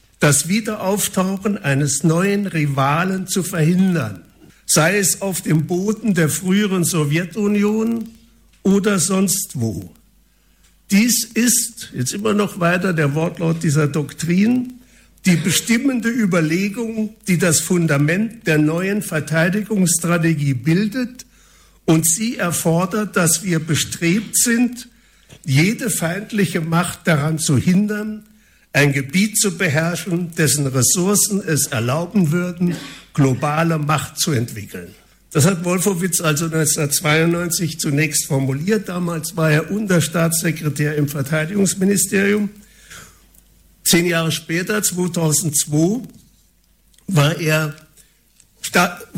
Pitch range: 155-200 Hz